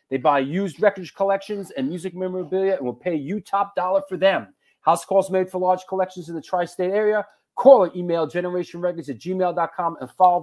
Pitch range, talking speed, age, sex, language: 175-210 Hz, 195 wpm, 40-59, male, English